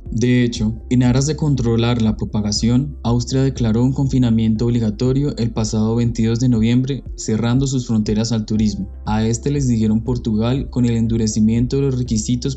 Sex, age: male, 10-29